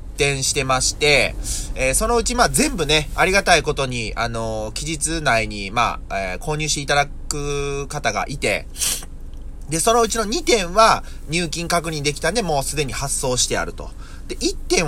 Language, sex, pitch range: Japanese, male, 110-170 Hz